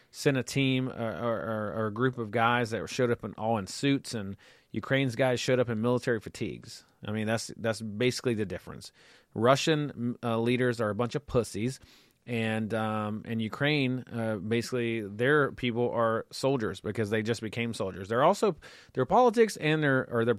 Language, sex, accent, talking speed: English, male, American, 185 wpm